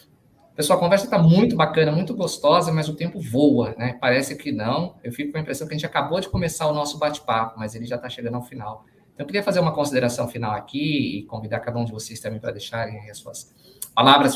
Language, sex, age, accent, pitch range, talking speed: Portuguese, male, 20-39, Brazilian, 115-140 Hz, 240 wpm